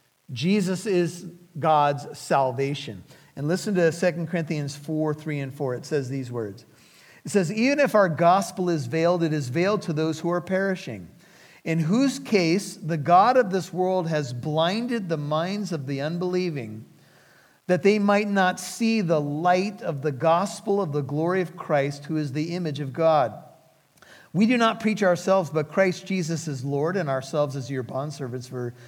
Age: 50-69